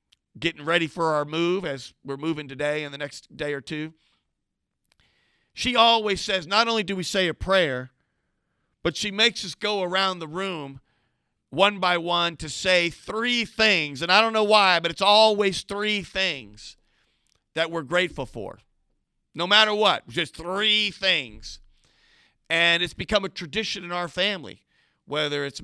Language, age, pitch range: English, 50-69, 150-195 Hz